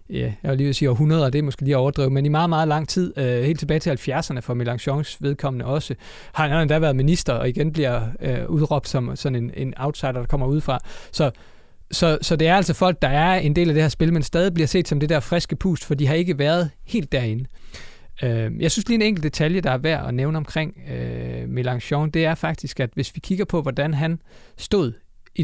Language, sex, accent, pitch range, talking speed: Danish, male, native, 135-165 Hz, 250 wpm